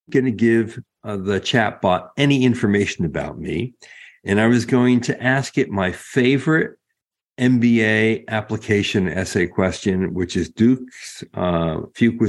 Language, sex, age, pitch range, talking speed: English, male, 60-79, 95-125 Hz, 140 wpm